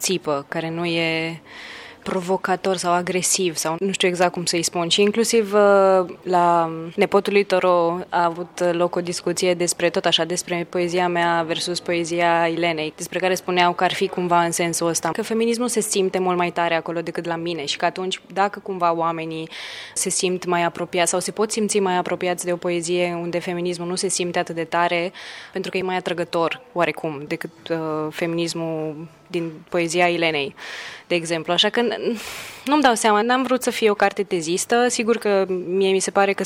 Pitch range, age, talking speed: 170-195 Hz, 20-39, 190 wpm